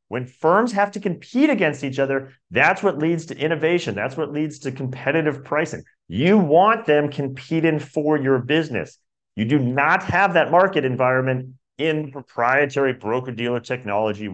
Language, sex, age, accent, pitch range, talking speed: English, male, 40-59, American, 130-165 Hz, 155 wpm